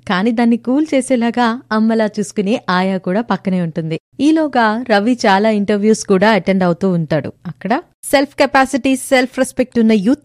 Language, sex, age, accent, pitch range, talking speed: Telugu, female, 20-39, native, 185-250 Hz, 145 wpm